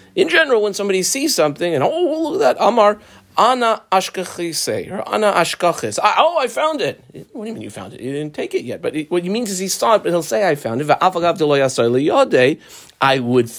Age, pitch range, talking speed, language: 40-59, 125-190 Hz, 215 wpm, English